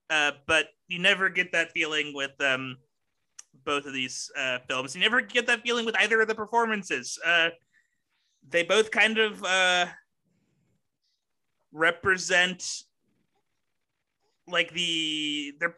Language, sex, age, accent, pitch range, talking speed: English, male, 30-49, American, 155-190 Hz, 130 wpm